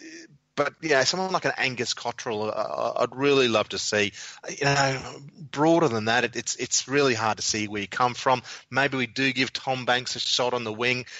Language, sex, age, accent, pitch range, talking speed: English, male, 30-49, Australian, 105-135 Hz, 215 wpm